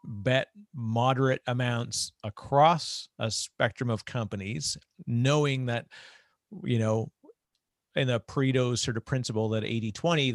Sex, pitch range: male, 110-145 Hz